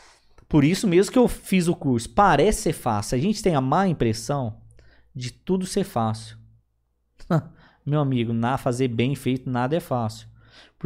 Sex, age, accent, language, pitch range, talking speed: male, 20-39, Brazilian, Portuguese, 130-185 Hz, 170 wpm